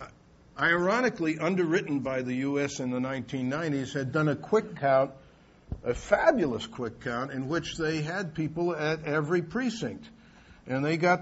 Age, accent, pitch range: 50-69, American, 125-160 Hz